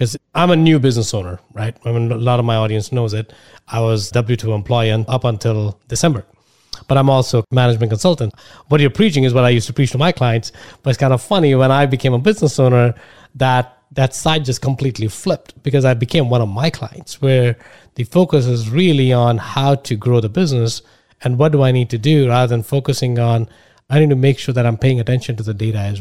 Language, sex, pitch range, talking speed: English, male, 120-140 Hz, 230 wpm